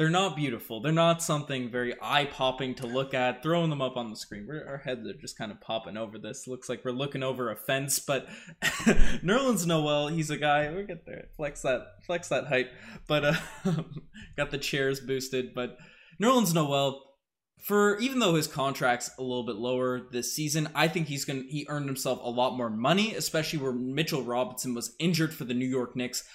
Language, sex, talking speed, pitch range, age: English, male, 210 wpm, 130-170 Hz, 20-39